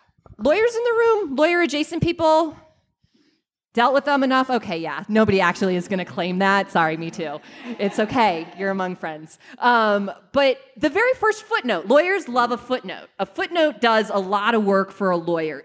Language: English